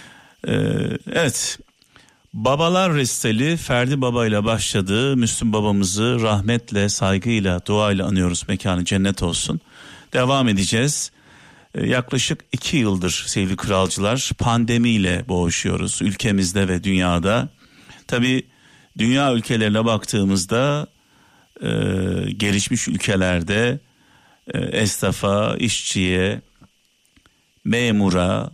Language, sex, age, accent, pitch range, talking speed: Turkish, male, 50-69, native, 100-125 Hz, 80 wpm